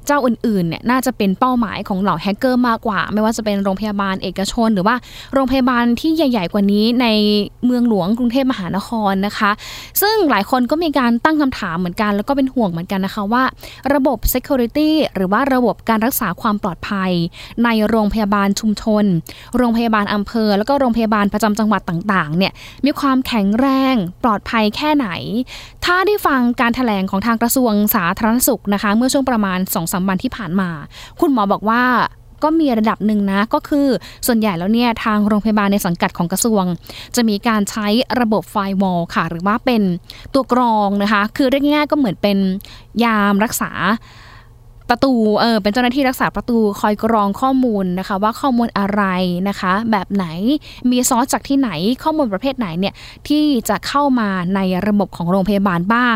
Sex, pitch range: female, 195-250 Hz